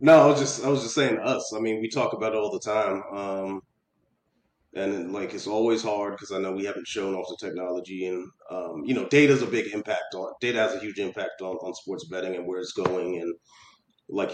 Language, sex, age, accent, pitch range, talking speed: English, male, 30-49, American, 95-115 Hz, 245 wpm